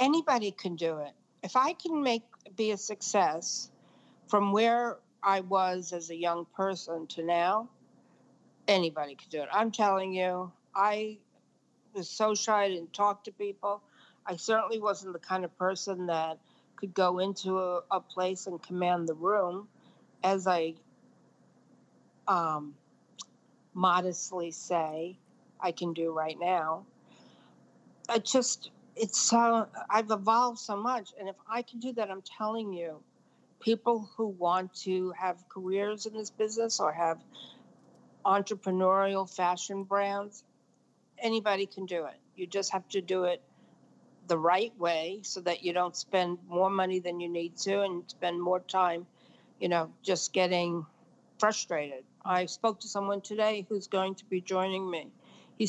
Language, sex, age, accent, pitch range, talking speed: English, female, 50-69, American, 180-215 Hz, 150 wpm